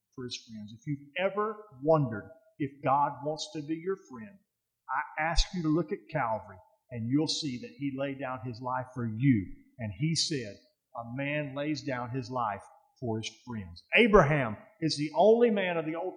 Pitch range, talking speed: 125-160 Hz, 195 wpm